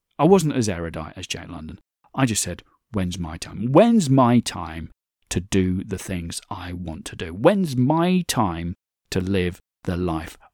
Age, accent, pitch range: 40-59, British, 90-115 Hz